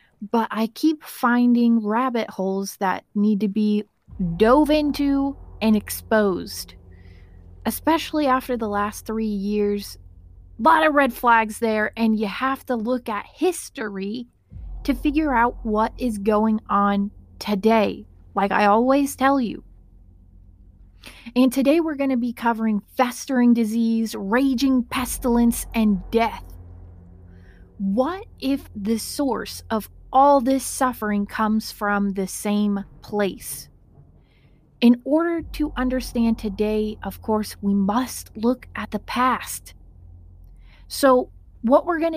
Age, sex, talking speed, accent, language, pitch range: 30-49, female, 125 wpm, American, English, 195-255 Hz